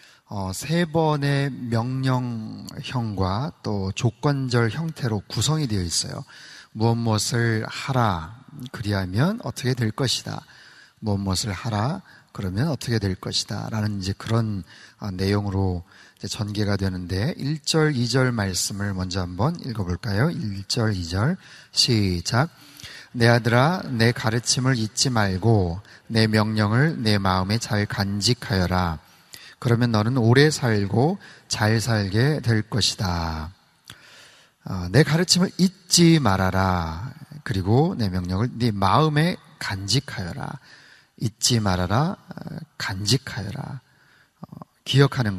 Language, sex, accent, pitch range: Korean, male, native, 100-140 Hz